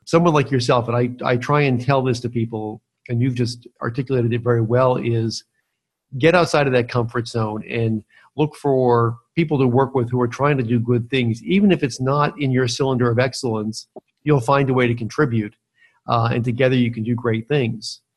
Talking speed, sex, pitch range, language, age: 210 wpm, male, 120-140 Hz, English, 50-69